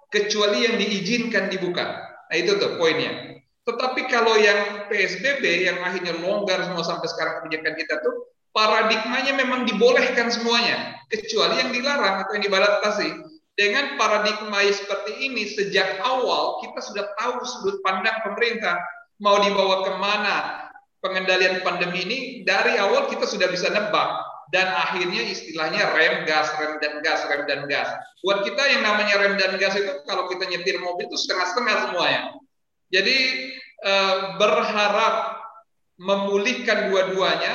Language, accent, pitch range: Indonesian, native, 190-245 Hz